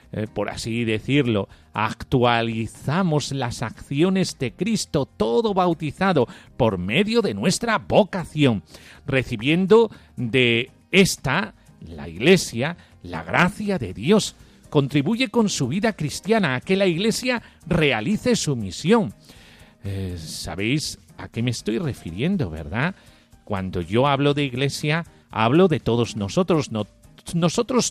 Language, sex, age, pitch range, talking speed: Spanish, male, 40-59, 115-190 Hz, 120 wpm